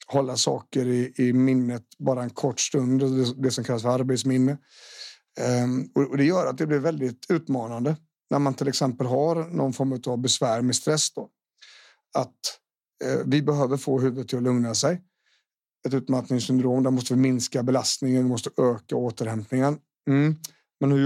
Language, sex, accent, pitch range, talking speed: Swedish, male, native, 125-135 Hz, 170 wpm